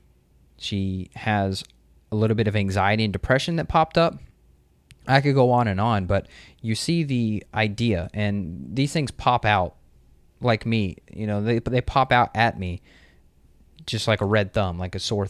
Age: 20-39